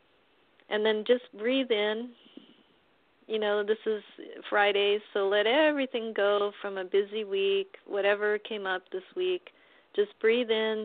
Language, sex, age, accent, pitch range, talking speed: English, female, 40-59, American, 210-275 Hz, 145 wpm